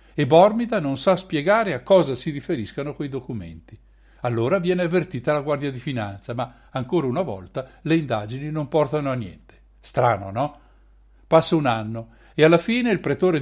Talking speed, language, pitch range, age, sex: 170 wpm, Italian, 120-165 Hz, 60-79, male